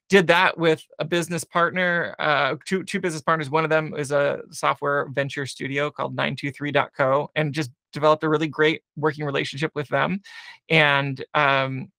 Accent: American